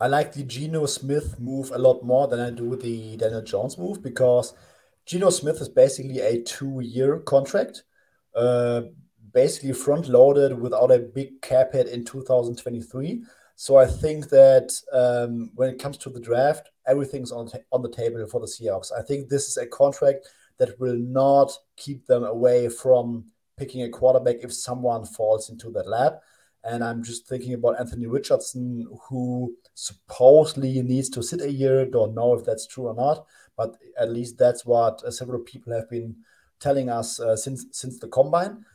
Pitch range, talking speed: 120-135 Hz, 180 wpm